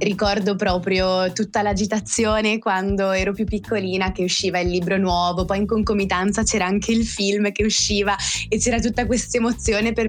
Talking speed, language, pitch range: 165 wpm, Italian, 180-220 Hz